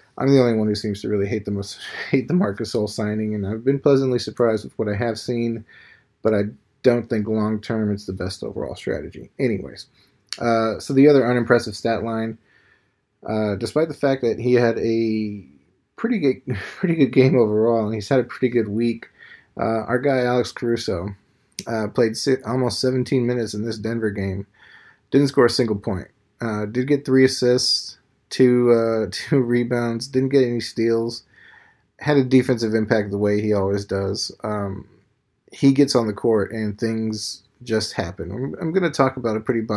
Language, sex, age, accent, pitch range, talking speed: English, male, 30-49, American, 105-125 Hz, 185 wpm